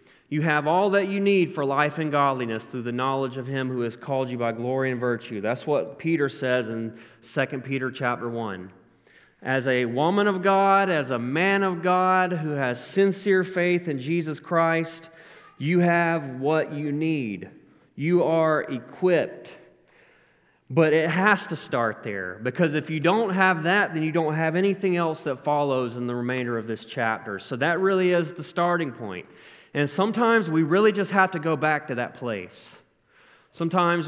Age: 30-49